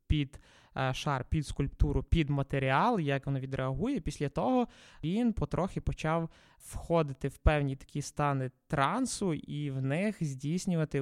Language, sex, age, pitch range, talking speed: Ukrainian, male, 20-39, 140-170 Hz, 135 wpm